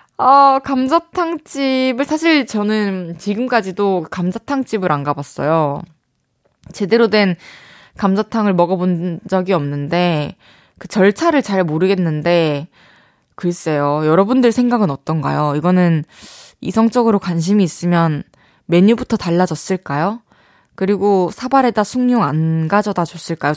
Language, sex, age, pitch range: Korean, female, 20-39, 175-245 Hz